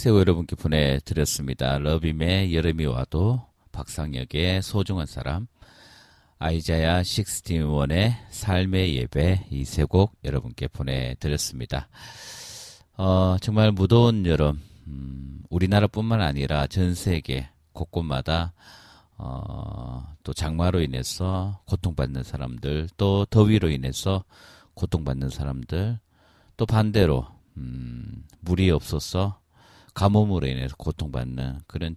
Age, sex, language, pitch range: 40-59, male, Korean, 75-95 Hz